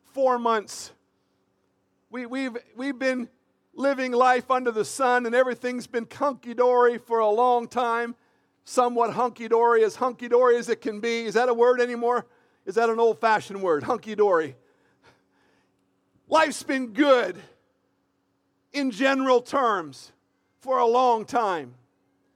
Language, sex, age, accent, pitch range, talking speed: English, male, 50-69, American, 225-285 Hz, 125 wpm